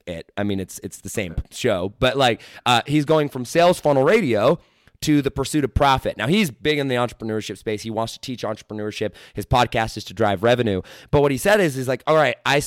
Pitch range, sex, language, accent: 115-145 Hz, male, English, American